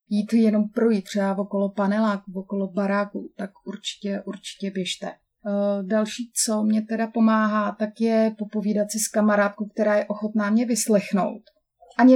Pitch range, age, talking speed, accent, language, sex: 190-215 Hz, 30-49, 145 wpm, native, Czech, female